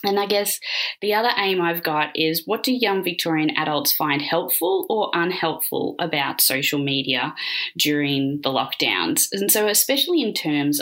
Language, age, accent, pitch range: English, 20-39, Australian, 145-200 Hz